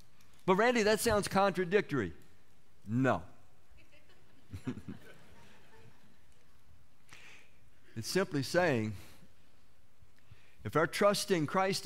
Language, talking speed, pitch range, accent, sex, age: English, 70 wpm, 130-195 Hz, American, male, 50-69